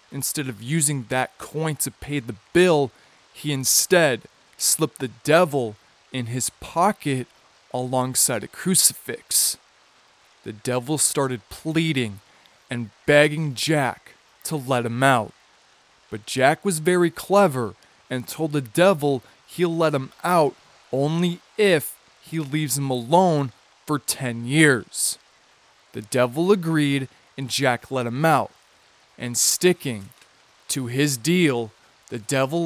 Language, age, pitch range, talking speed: English, 20-39, 120-155 Hz, 125 wpm